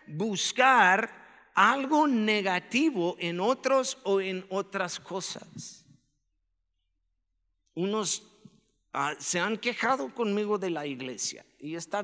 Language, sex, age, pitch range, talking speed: Spanish, male, 50-69, 160-265 Hz, 100 wpm